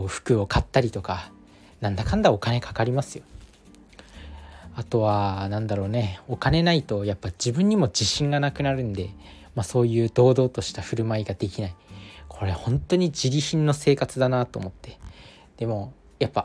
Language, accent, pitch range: Japanese, native, 100-140 Hz